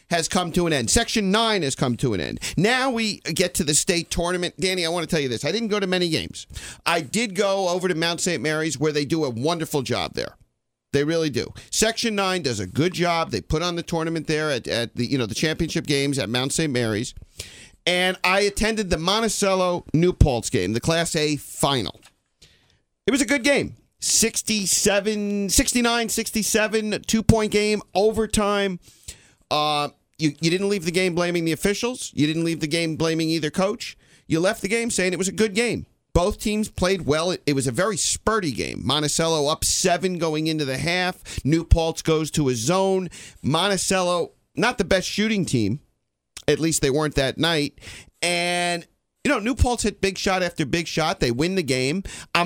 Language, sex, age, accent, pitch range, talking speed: English, male, 40-59, American, 145-195 Hz, 200 wpm